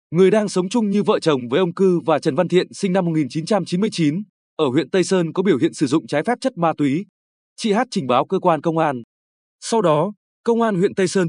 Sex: male